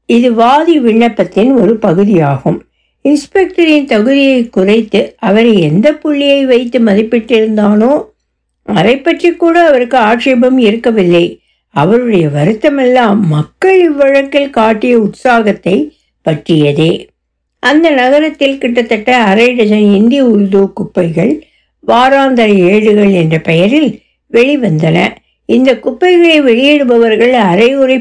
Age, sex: 60-79, female